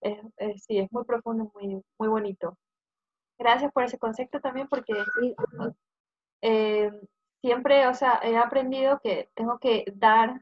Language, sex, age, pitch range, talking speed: English, female, 20-39, 205-245 Hz, 130 wpm